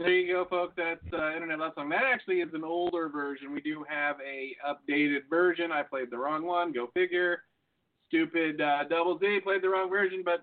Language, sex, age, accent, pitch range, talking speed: English, male, 40-59, American, 145-195 Hz, 205 wpm